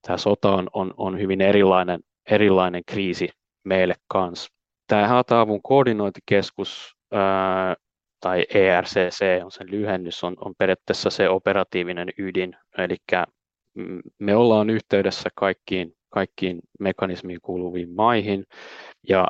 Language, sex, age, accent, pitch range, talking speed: Finnish, male, 20-39, native, 90-100 Hz, 110 wpm